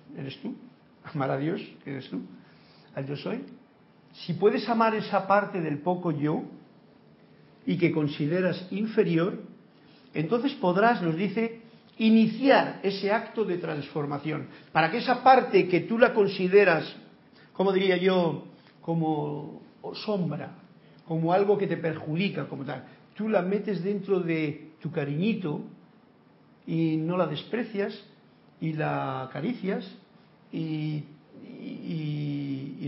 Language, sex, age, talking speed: Spanish, male, 50-69, 120 wpm